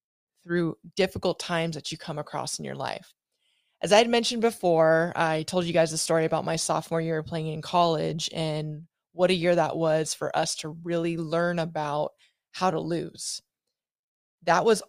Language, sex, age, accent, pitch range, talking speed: English, female, 20-39, American, 160-200 Hz, 180 wpm